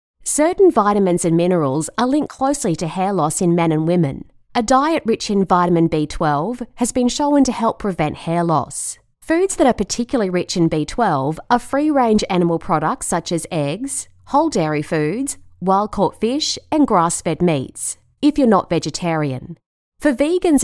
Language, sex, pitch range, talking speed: English, female, 155-250 Hz, 165 wpm